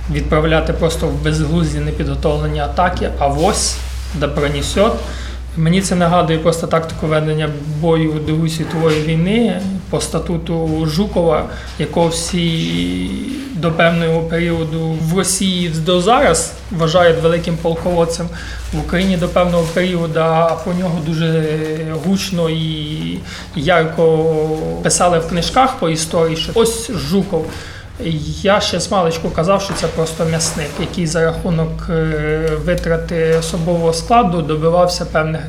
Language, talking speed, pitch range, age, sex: Ukrainian, 120 wpm, 155-175 Hz, 30-49, male